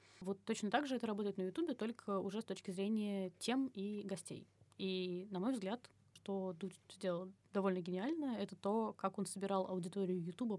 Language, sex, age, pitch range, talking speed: Russian, female, 20-39, 185-205 Hz, 180 wpm